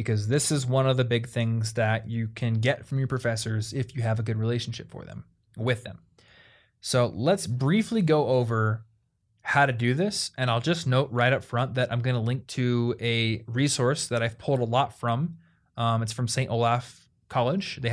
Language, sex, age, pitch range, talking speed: English, male, 20-39, 115-135 Hz, 205 wpm